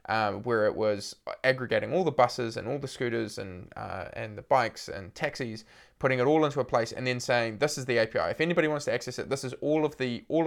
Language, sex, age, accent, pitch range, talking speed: English, male, 20-39, Australian, 115-135 Hz, 250 wpm